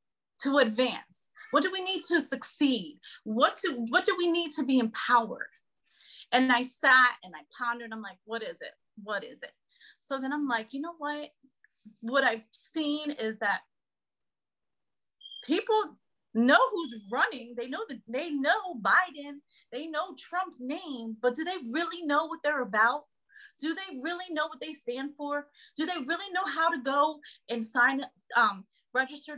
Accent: American